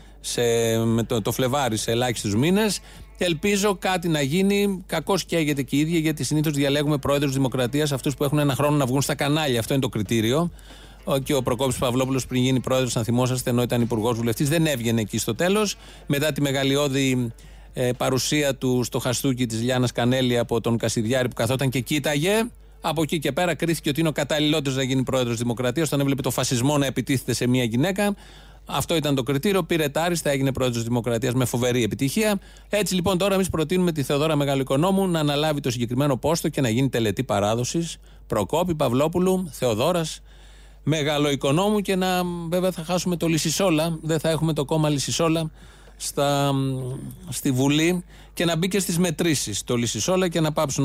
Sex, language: male, Greek